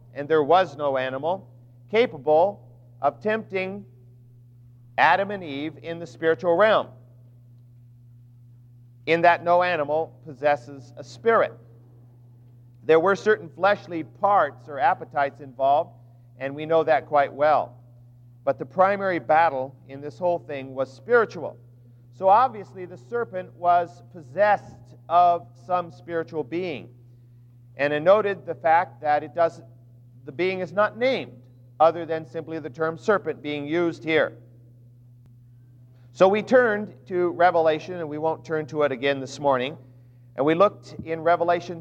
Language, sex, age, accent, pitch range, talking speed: English, male, 50-69, American, 120-170 Hz, 140 wpm